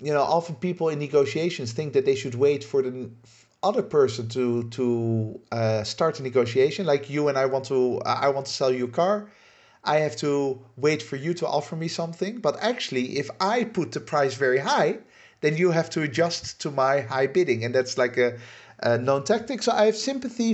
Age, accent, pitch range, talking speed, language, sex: 50-69, Dutch, 125-175 Hz, 215 wpm, English, male